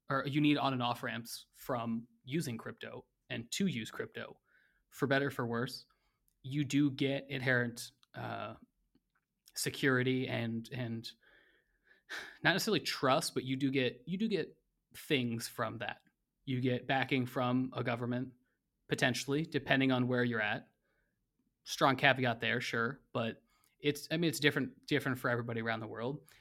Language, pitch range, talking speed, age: English, 120-140 Hz, 155 wpm, 20-39